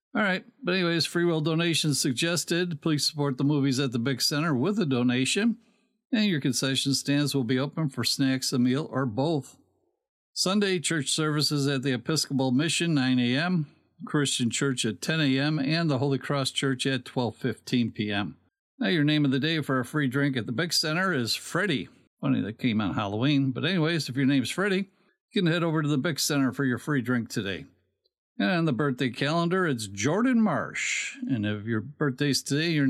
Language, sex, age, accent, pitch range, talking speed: English, male, 60-79, American, 130-170 Hz, 195 wpm